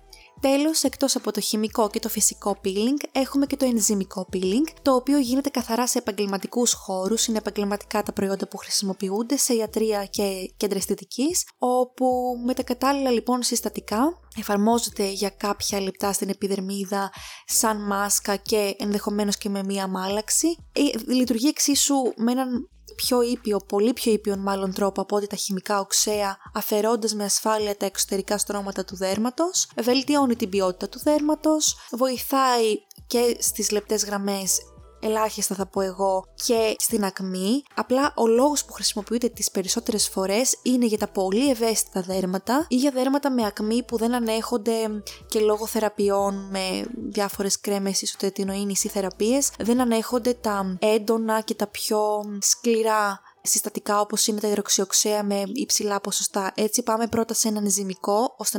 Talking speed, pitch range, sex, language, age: 155 wpm, 200-245 Hz, female, Greek, 20-39